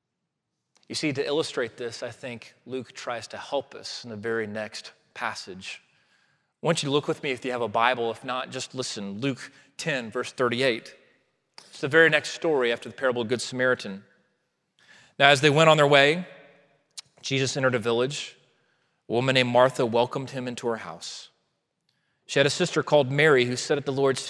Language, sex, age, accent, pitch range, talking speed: English, male, 30-49, American, 125-160 Hz, 195 wpm